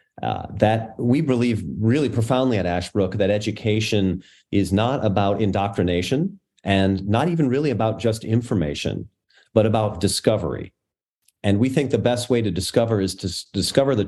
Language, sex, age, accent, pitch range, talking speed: English, male, 40-59, American, 95-120 Hz, 155 wpm